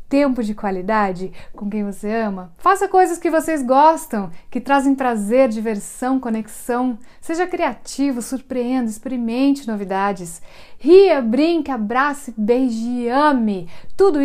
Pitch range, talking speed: 225-280 Hz, 120 wpm